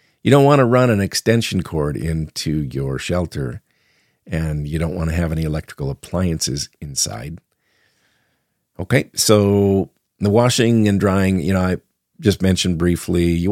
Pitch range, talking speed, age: 85-110 Hz, 150 wpm, 50-69